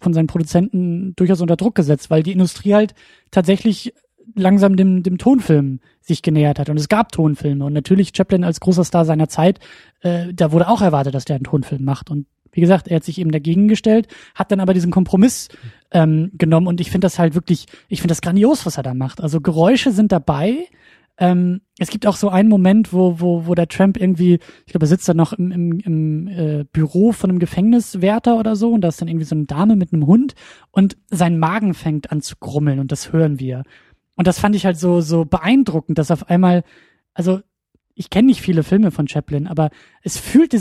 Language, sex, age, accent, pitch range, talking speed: German, male, 20-39, German, 160-200 Hz, 220 wpm